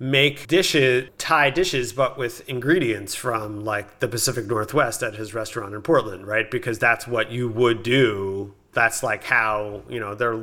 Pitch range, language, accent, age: 105-125 Hz, English, American, 30-49